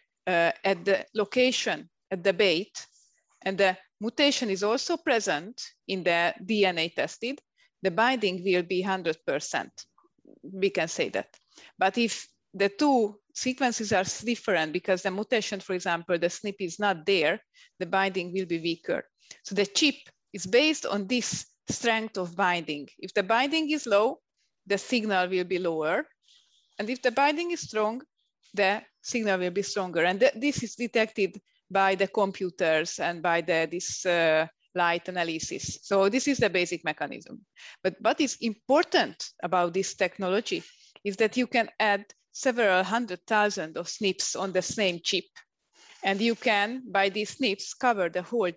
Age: 30-49